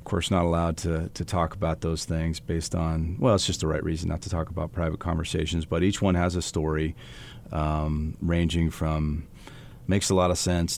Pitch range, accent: 80-95 Hz, American